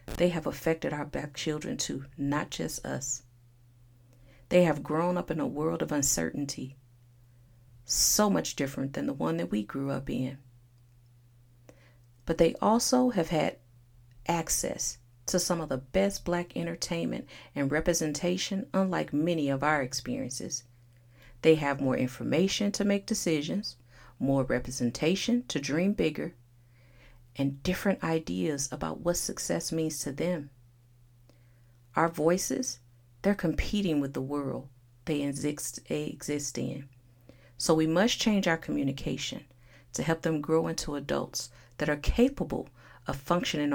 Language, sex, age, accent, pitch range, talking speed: English, female, 40-59, American, 120-165 Hz, 135 wpm